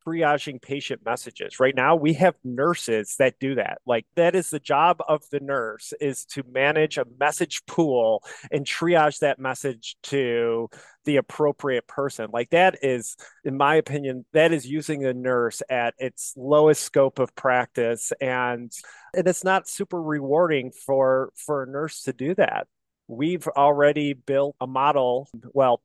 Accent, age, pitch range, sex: American, 30-49, 120-150 Hz, male